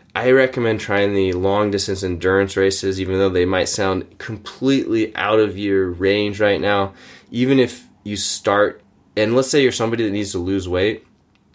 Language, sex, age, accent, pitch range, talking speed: English, male, 20-39, American, 95-115 Hz, 175 wpm